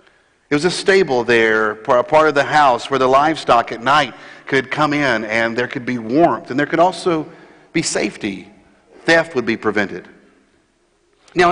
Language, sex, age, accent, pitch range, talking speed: English, male, 50-69, American, 135-185 Hz, 175 wpm